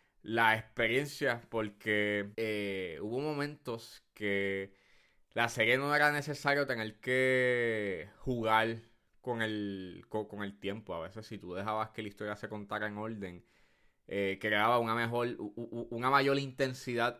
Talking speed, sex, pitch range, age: 145 wpm, male, 105-120 Hz, 20-39